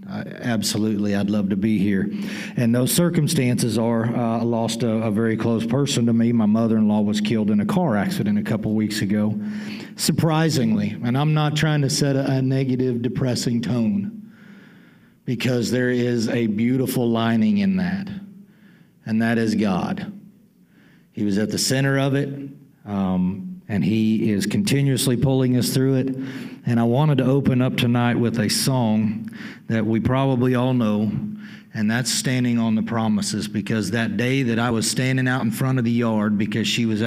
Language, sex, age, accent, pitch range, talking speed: English, male, 50-69, American, 110-150 Hz, 175 wpm